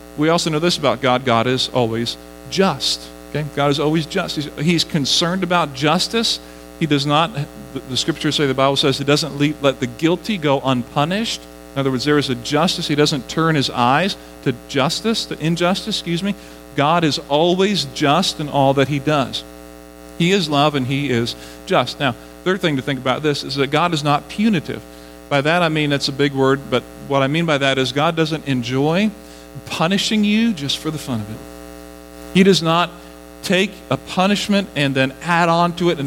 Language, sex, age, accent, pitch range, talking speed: English, male, 40-59, American, 125-165 Hz, 205 wpm